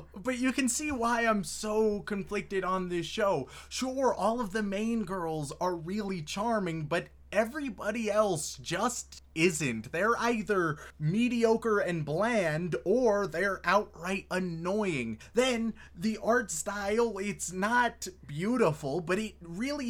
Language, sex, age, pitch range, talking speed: English, male, 20-39, 155-215 Hz, 135 wpm